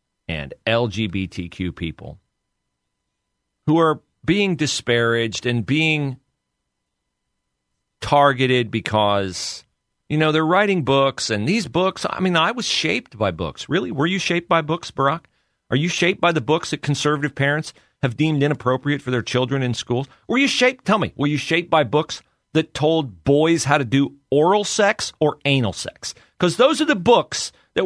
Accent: American